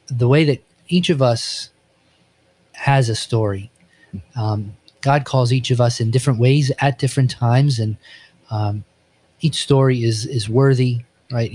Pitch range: 115-135 Hz